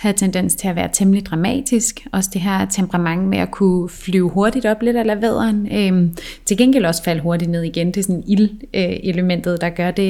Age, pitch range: 30-49, 185-220 Hz